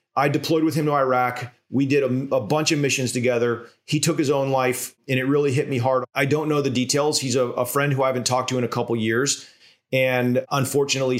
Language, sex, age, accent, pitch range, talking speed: English, male, 30-49, American, 125-150 Hz, 245 wpm